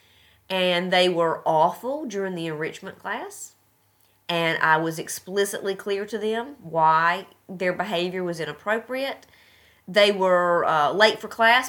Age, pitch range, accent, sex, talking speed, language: 30-49, 175-235 Hz, American, female, 135 wpm, English